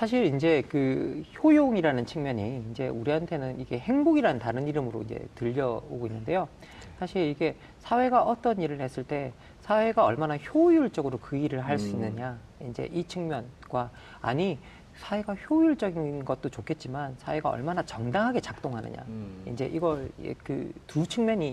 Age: 40-59